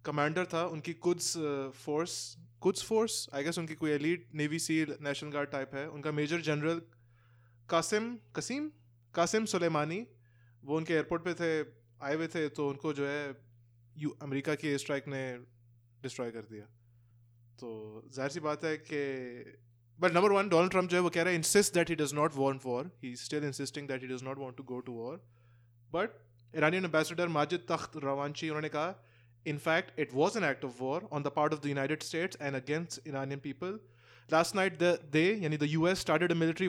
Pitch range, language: 130-165 Hz, English